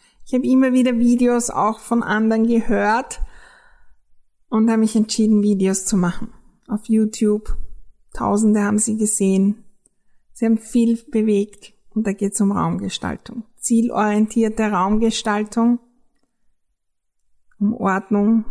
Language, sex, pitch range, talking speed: German, female, 205-235 Hz, 115 wpm